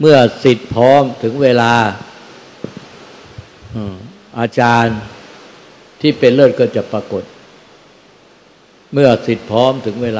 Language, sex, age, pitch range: Thai, male, 60-79, 105-125 Hz